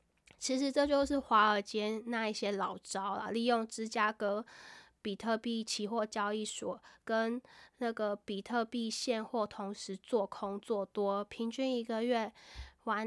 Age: 10-29